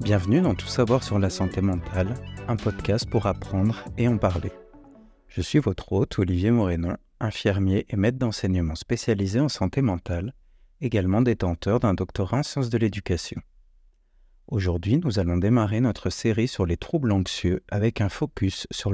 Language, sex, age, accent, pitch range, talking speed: French, male, 50-69, French, 90-120 Hz, 160 wpm